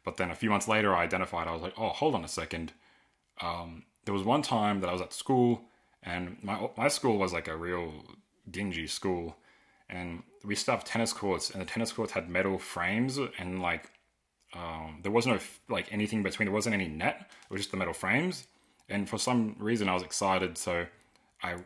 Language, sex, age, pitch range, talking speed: English, male, 20-39, 85-110 Hz, 210 wpm